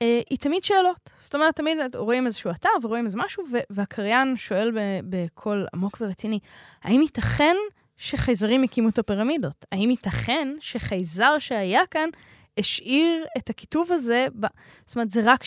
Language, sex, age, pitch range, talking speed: Hebrew, female, 10-29, 190-255 Hz, 145 wpm